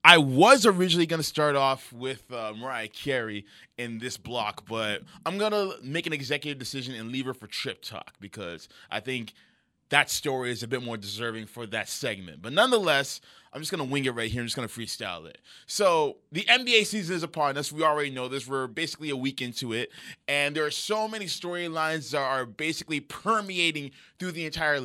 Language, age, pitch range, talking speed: English, 20-39, 120-160 Hz, 205 wpm